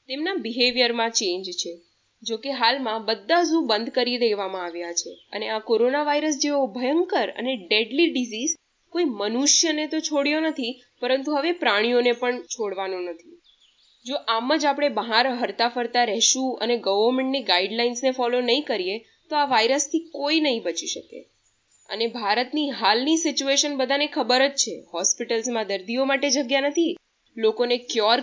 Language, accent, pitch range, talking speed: Gujarati, native, 230-295 Hz, 140 wpm